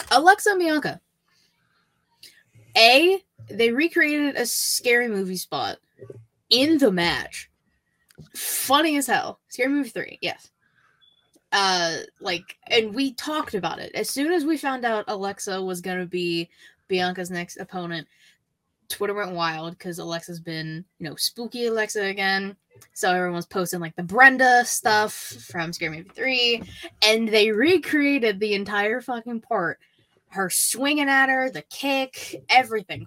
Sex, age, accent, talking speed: female, 10-29, American, 140 wpm